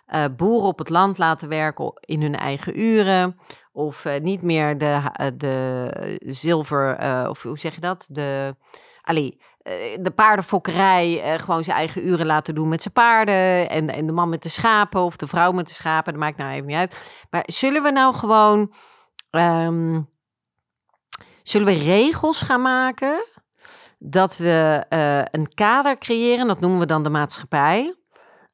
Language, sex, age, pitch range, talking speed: Dutch, female, 40-59, 155-210 Hz, 170 wpm